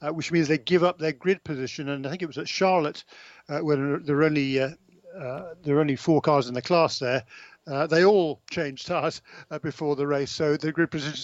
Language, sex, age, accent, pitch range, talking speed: English, male, 50-69, British, 150-180 Hz, 240 wpm